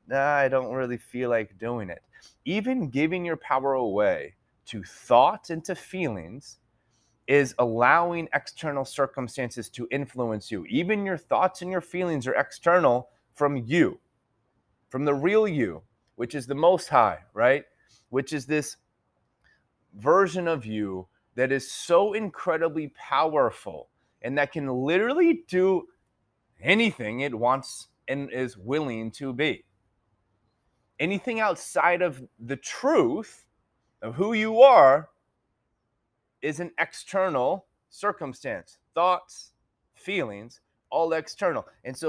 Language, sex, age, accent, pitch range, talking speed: English, male, 30-49, American, 120-165 Hz, 125 wpm